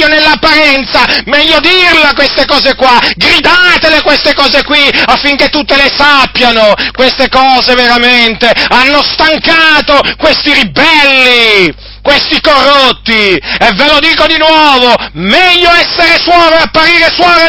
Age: 30-49